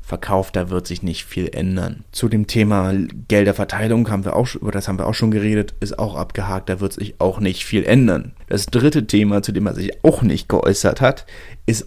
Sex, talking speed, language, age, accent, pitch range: male, 215 wpm, German, 30-49, German, 95-110 Hz